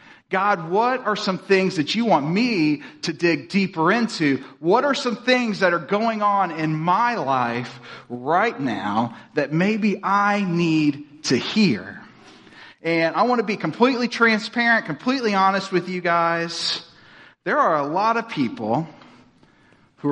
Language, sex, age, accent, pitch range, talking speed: English, male, 40-59, American, 155-210 Hz, 150 wpm